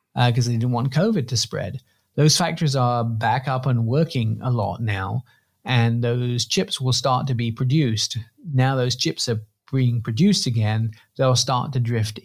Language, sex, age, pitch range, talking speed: English, male, 40-59, 110-130 Hz, 180 wpm